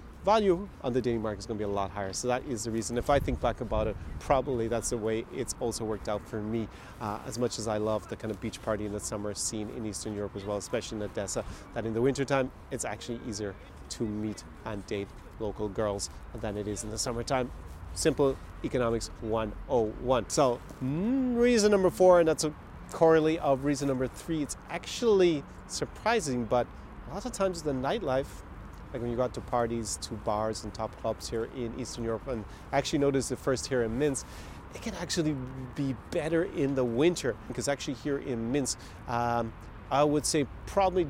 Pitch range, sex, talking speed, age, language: 105-140 Hz, male, 205 wpm, 30-49, English